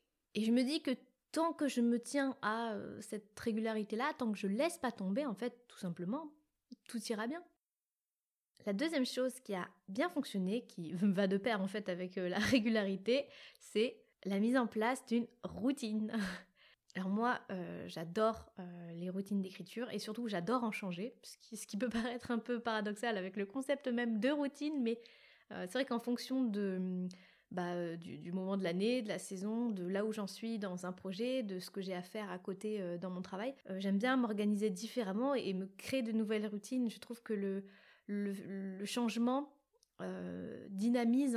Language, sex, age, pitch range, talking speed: French, female, 20-39, 195-245 Hz, 190 wpm